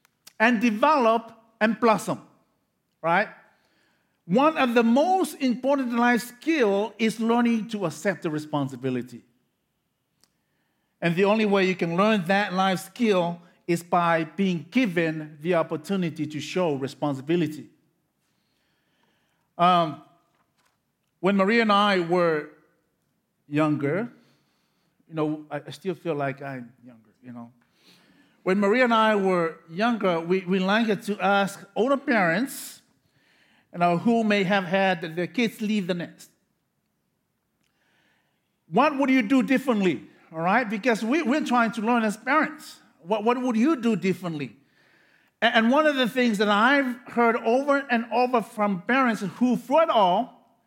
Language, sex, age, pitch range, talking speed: English, male, 50-69, 175-245 Hz, 135 wpm